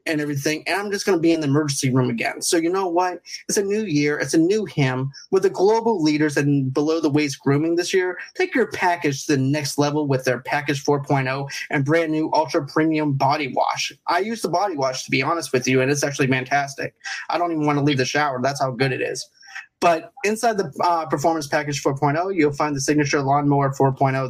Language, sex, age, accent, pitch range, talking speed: English, male, 30-49, American, 140-180 Hz, 220 wpm